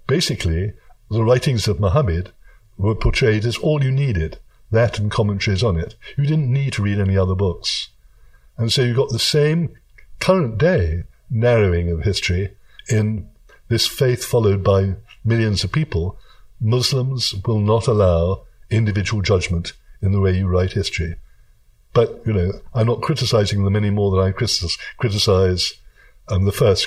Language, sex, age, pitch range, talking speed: English, male, 60-79, 95-120 Hz, 160 wpm